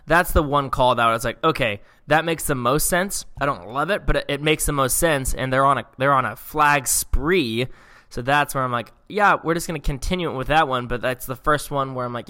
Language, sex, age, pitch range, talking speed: English, male, 10-29, 115-145 Hz, 270 wpm